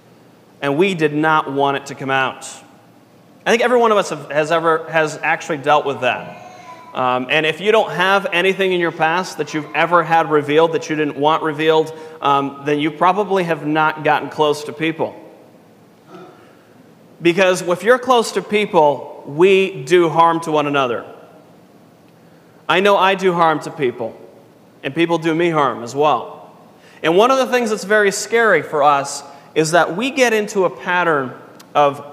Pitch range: 150-195 Hz